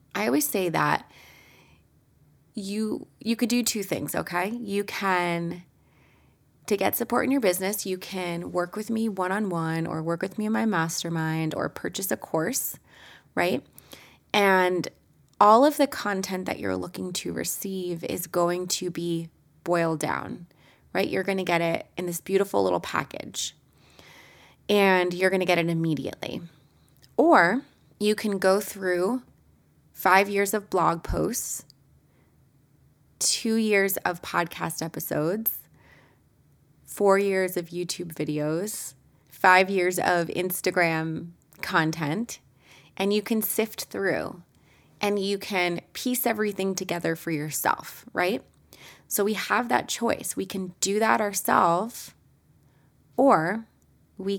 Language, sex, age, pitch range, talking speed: English, female, 20-39, 170-205 Hz, 130 wpm